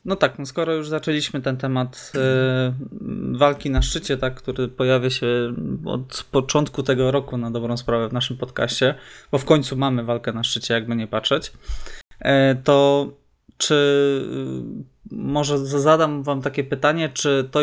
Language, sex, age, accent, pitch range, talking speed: Polish, male, 20-39, native, 125-140 Hz, 160 wpm